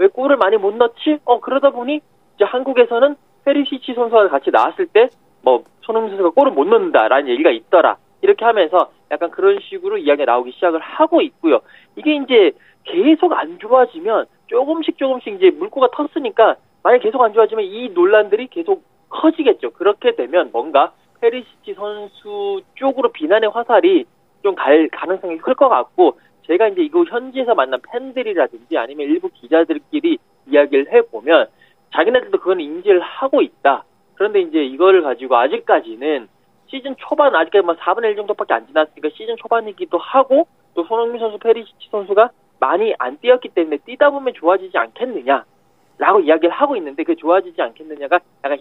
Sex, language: male, Korean